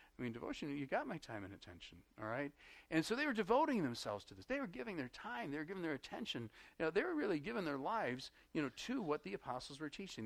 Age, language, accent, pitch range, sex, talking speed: 50-69, English, American, 115-165 Hz, male, 265 wpm